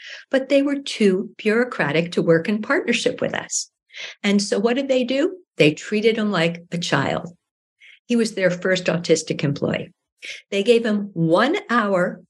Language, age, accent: English, 60-79, American